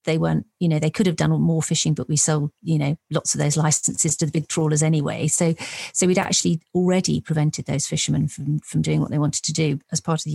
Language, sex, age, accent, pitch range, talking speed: English, female, 40-59, British, 160-210 Hz, 255 wpm